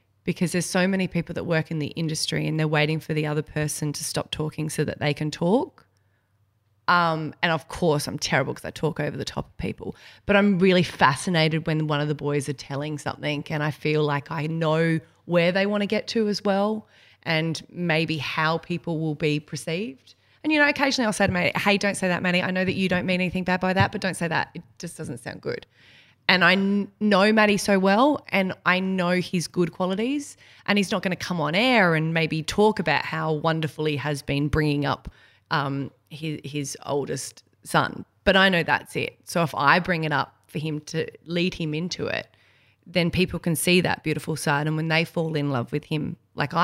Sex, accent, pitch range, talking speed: female, Australian, 150-185 Hz, 225 wpm